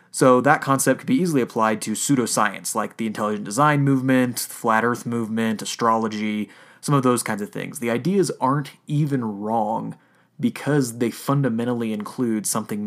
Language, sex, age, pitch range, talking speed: English, male, 30-49, 115-175 Hz, 165 wpm